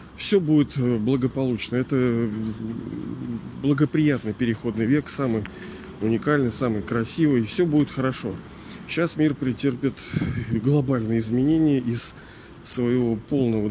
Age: 40-59